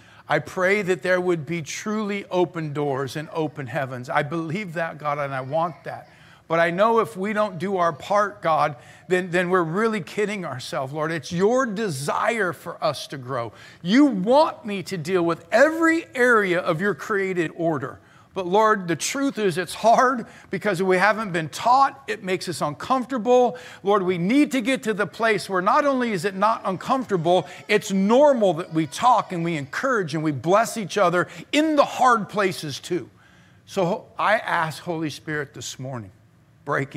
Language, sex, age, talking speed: English, male, 50-69, 185 wpm